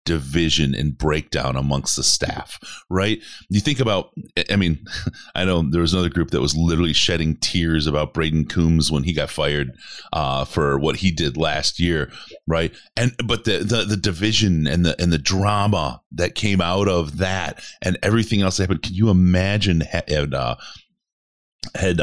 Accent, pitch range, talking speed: American, 80-100 Hz, 175 wpm